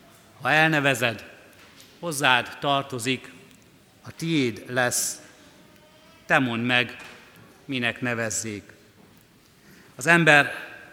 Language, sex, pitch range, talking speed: Hungarian, male, 125-150 Hz, 75 wpm